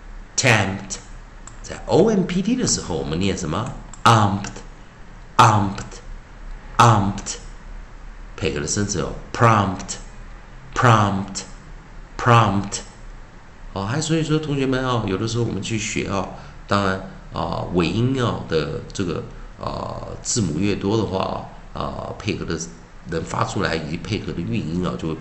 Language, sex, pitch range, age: Chinese, male, 95-125 Hz, 50-69